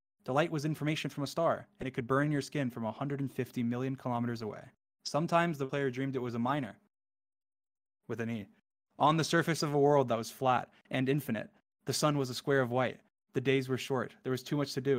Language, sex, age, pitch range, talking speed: English, male, 20-39, 140-195 Hz, 225 wpm